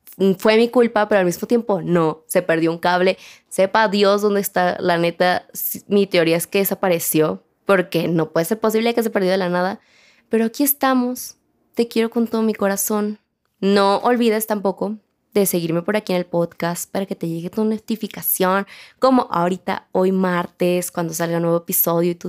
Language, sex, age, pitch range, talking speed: Spanish, female, 20-39, 175-220 Hz, 190 wpm